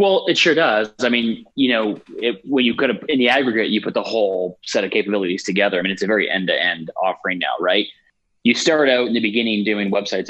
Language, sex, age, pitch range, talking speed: English, male, 20-39, 95-115 Hz, 250 wpm